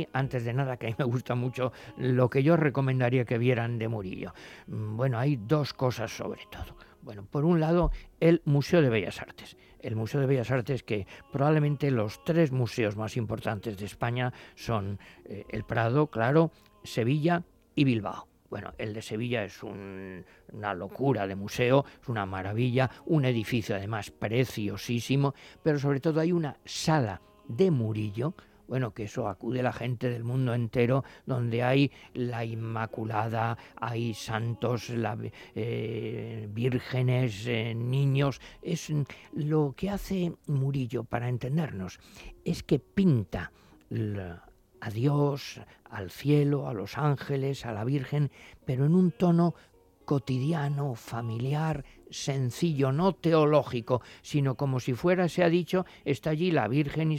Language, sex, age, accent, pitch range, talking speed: Spanish, male, 50-69, Spanish, 115-145 Hz, 145 wpm